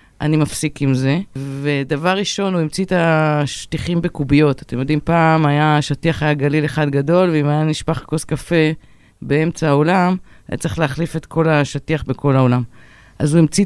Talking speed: 165 wpm